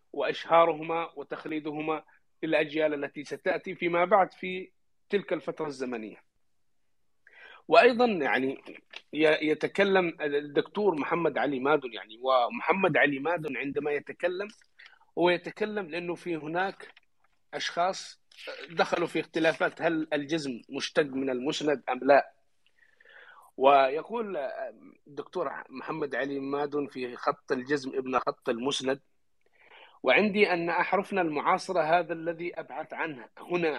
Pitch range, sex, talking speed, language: 155-180 Hz, male, 105 wpm, English